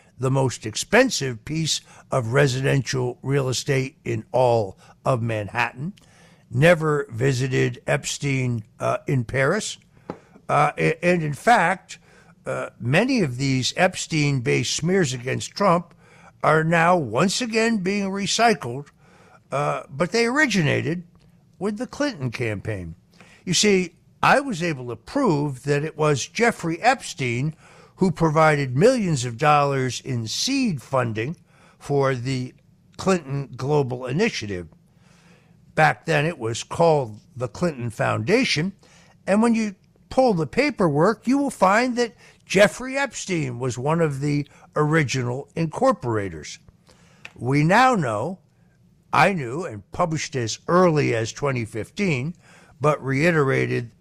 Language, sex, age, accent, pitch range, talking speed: English, male, 60-79, American, 130-180 Hz, 120 wpm